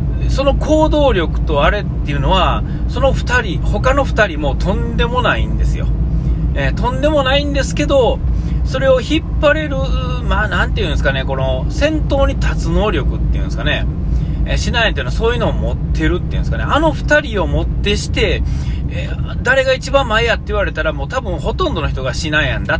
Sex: male